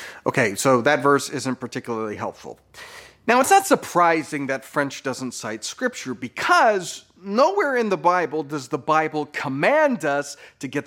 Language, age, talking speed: English, 30-49, 155 wpm